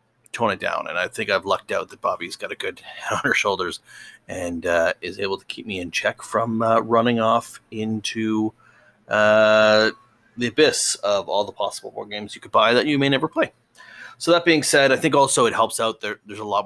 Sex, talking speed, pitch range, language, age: male, 225 wpm, 105-120 Hz, English, 30-49